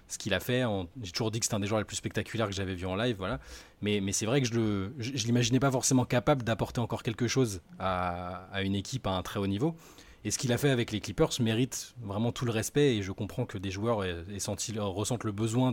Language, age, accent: French, 20-39, French